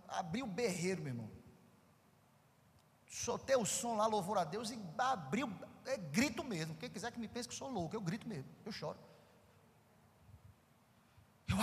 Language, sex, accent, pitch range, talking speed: Portuguese, male, Brazilian, 180-255 Hz, 160 wpm